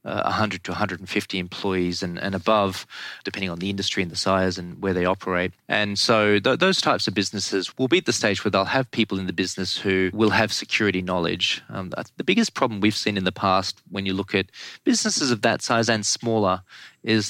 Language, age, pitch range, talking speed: English, 20-39, 90-110 Hz, 215 wpm